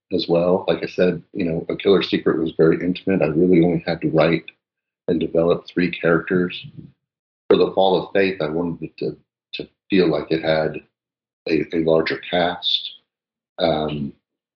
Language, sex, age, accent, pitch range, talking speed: English, male, 50-69, American, 75-90 Hz, 175 wpm